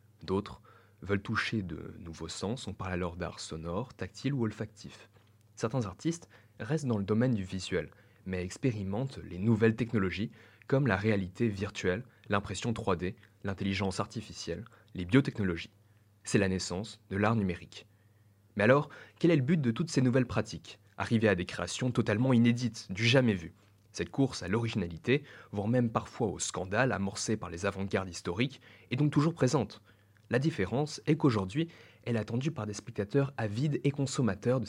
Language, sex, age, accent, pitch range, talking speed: French, male, 20-39, French, 100-120 Hz, 165 wpm